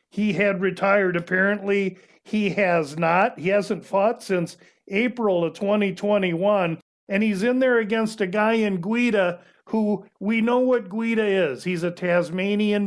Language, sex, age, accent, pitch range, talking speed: English, male, 50-69, American, 180-205 Hz, 150 wpm